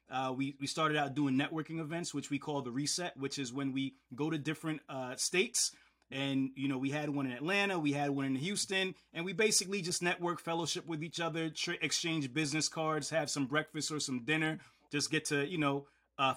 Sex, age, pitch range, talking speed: male, 30-49, 140-155 Hz, 215 wpm